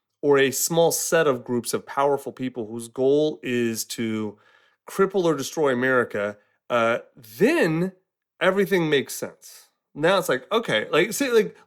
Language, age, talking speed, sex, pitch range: English, 30-49, 150 wpm, male, 120-185 Hz